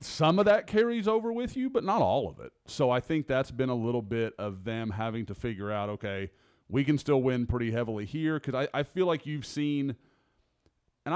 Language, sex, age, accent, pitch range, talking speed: English, male, 30-49, American, 105-135 Hz, 225 wpm